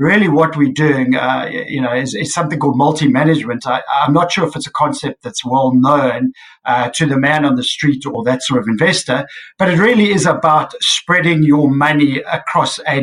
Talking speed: 205 wpm